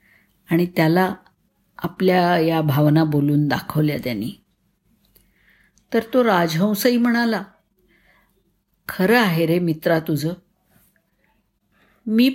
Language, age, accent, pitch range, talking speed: Marathi, 50-69, native, 165-215 Hz, 85 wpm